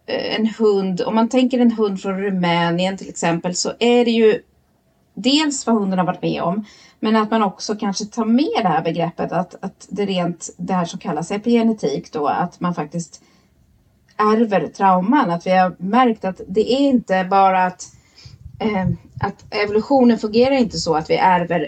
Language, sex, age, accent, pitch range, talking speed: Swedish, female, 30-49, native, 175-235 Hz, 180 wpm